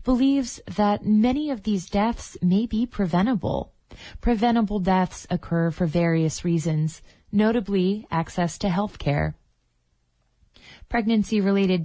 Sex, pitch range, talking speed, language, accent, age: female, 165-210 Hz, 105 wpm, English, American, 20-39